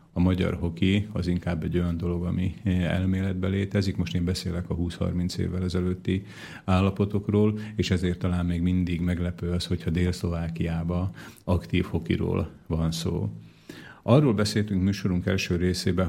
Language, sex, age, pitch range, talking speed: Slovak, male, 40-59, 85-100 Hz, 140 wpm